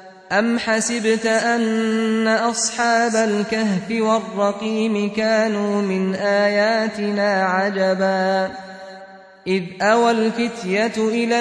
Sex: male